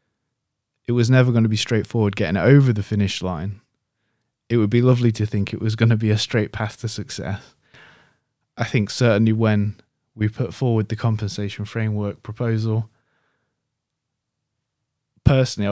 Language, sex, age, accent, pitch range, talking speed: English, male, 20-39, British, 105-130 Hz, 155 wpm